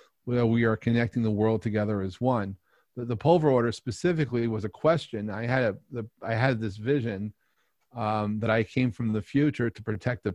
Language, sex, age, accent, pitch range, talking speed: English, male, 40-59, American, 110-125 Hz, 210 wpm